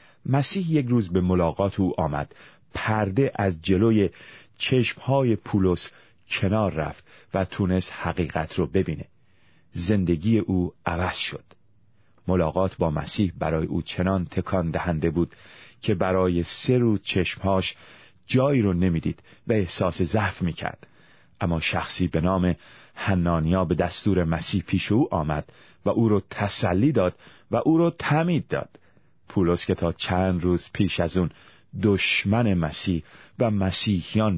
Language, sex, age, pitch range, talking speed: Persian, male, 30-49, 90-110 Hz, 135 wpm